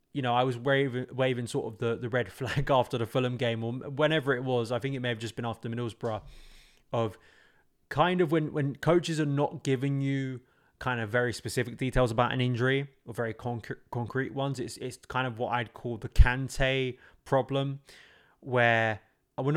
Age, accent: 20-39, British